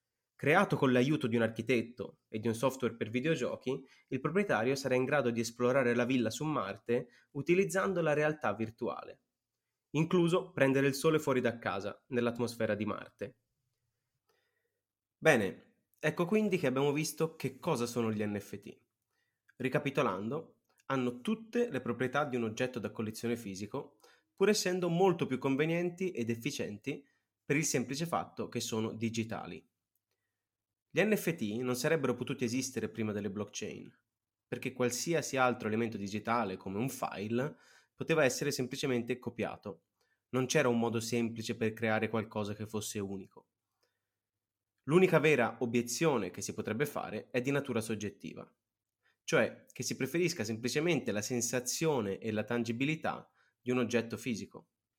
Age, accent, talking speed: 20-39, native, 140 wpm